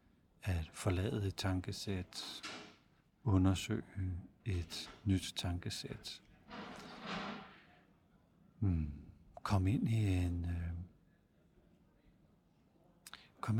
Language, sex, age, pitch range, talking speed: Danish, male, 60-79, 90-110 Hz, 60 wpm